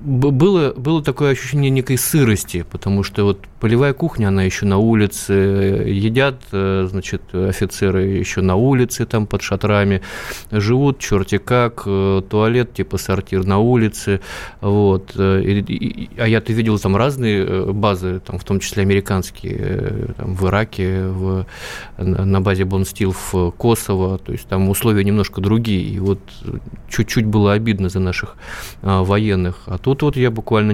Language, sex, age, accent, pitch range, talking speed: Russian, male, 20-39, native, 95-115 Hz, 150 wpm